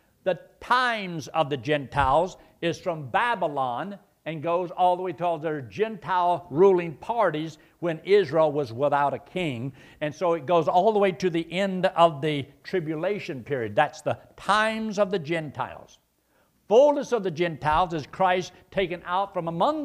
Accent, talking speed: American, 165 wpm